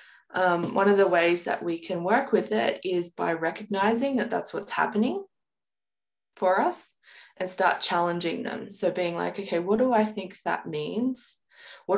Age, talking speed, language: 20-39, 175 wpm, English